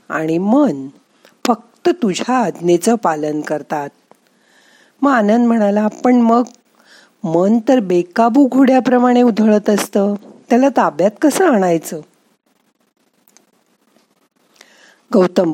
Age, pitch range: 50-69, 175-255 Hz